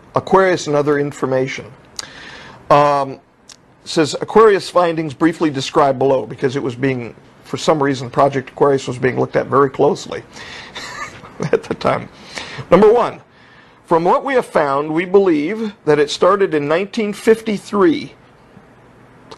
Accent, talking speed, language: American, 135 wpm, English